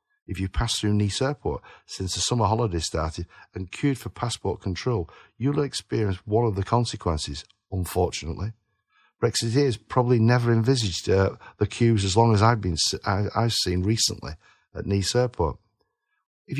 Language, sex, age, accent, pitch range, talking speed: English, male, 50-69, British, 95-120 Hz, 155 wpm